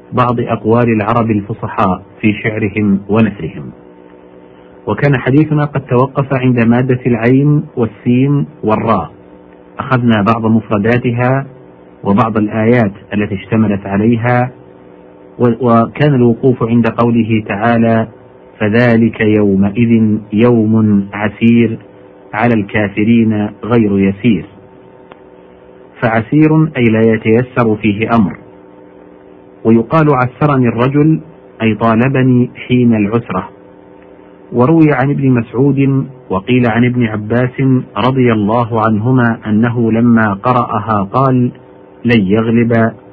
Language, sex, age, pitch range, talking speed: Arabic, male, 50-69, 105-125 Hz, 95 wpm